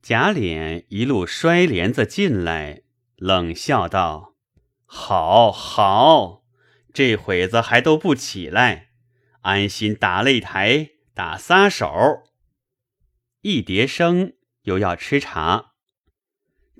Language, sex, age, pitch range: Chinese, male, 30-49, 95-140 Hz